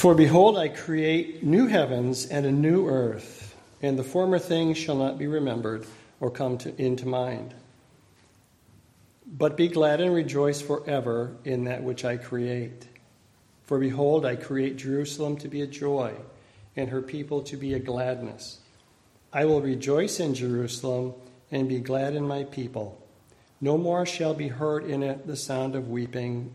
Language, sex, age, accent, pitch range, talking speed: English, male, 40-59, American, 125-145 Hz, 160 wpm